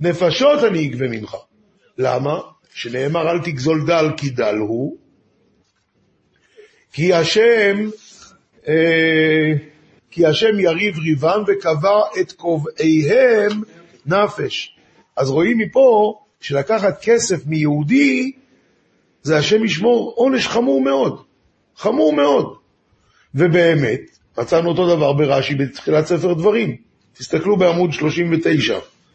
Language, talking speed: Hebrew, 95 wpm